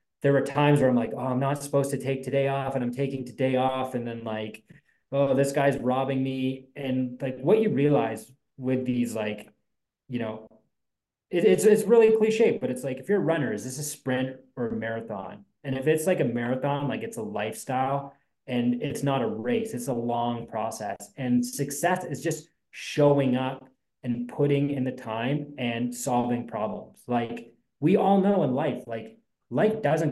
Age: 20-39